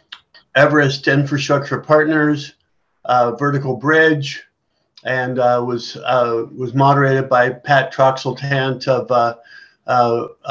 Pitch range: 125-150 Hz